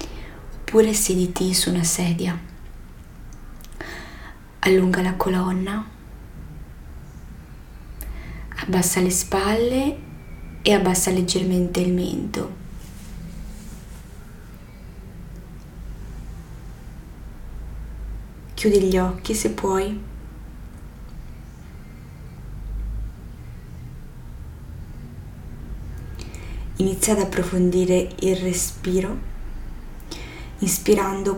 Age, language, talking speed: 20-39, Italian, 50 wpm